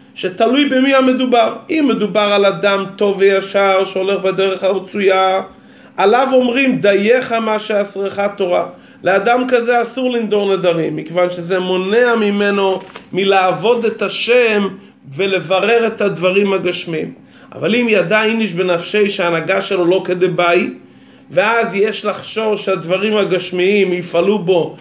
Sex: male